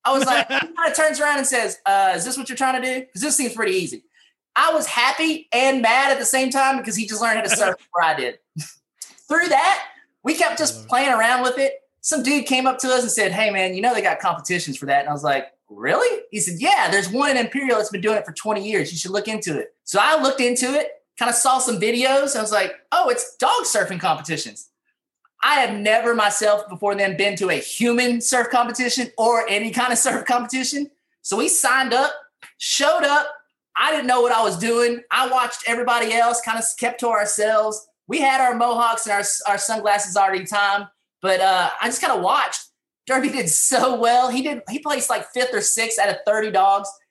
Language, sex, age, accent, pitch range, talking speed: English, male, 20-39, American, 210-275 Hz, 235 wpm